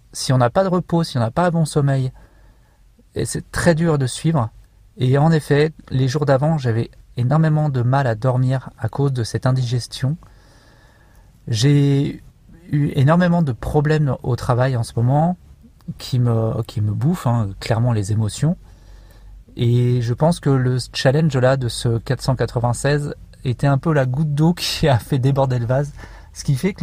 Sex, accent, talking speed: male, French, 175 wpm